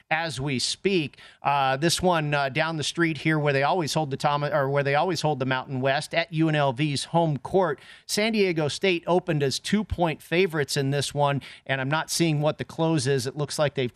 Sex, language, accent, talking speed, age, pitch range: male, English, American, 225 wpm, 40-59, 140-175 Hz